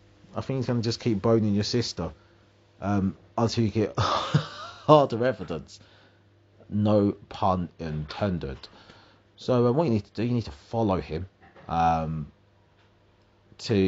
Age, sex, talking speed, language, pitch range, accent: 30-49, male, 145 wpm, English, 85-105 Hz, British